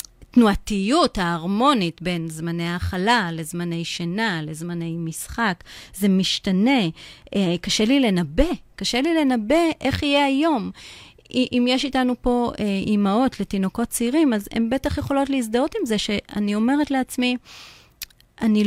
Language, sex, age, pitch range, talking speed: Hebrew, female, 30-49, 185-255 Hz, 120 wpm